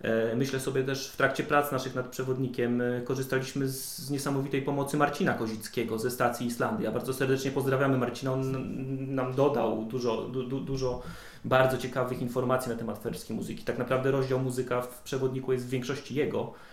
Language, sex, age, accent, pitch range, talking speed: Polish, male, 30-49, native, 130-160 Hz, 170 wpm